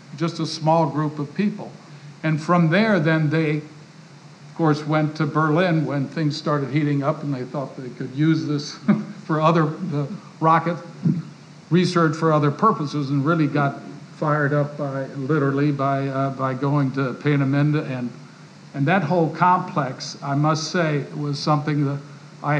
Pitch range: 145-170 Hz